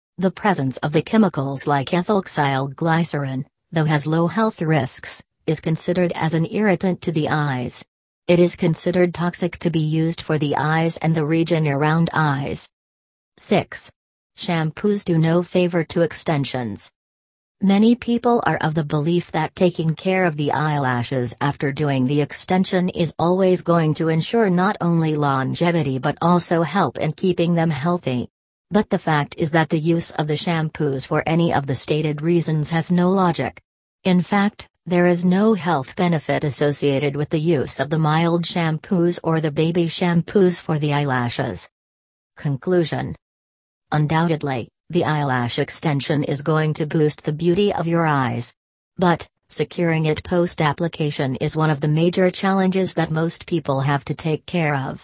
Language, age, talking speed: English, 40-59, 160 wpm